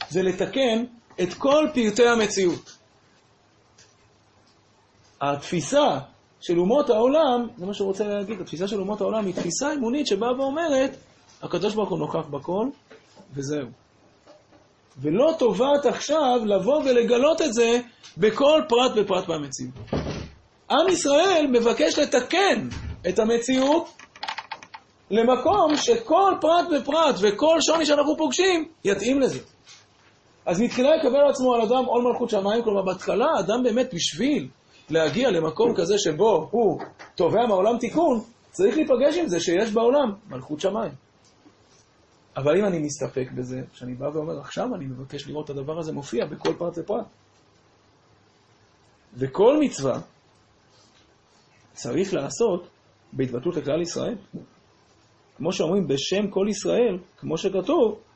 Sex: male